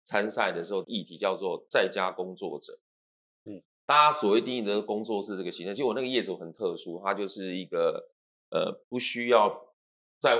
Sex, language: male, Chinese